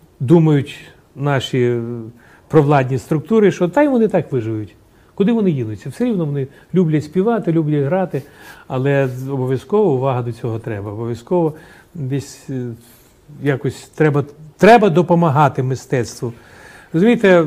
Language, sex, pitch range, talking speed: Ukrainian, male, 130-175 Hz, 115 wpm